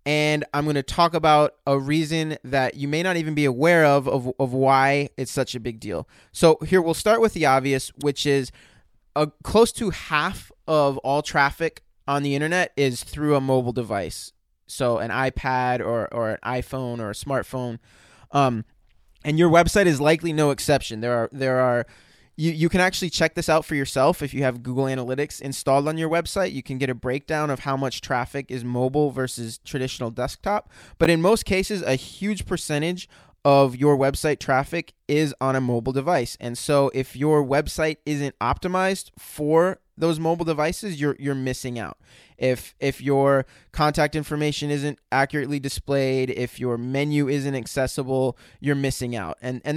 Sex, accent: male, American